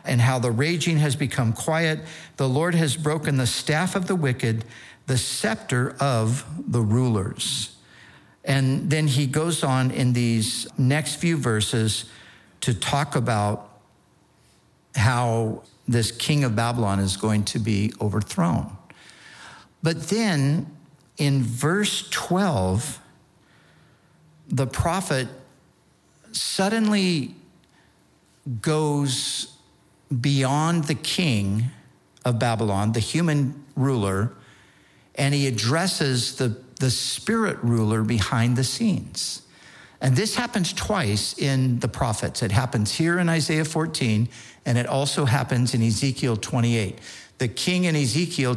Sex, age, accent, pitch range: male, 60-79, American, 115-155 Hz